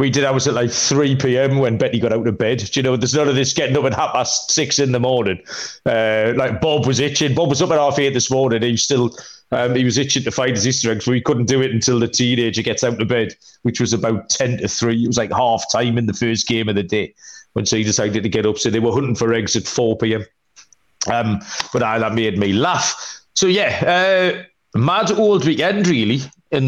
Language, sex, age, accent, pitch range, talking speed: English, male, 30-49, British, 115-140 Hz, 250 wpm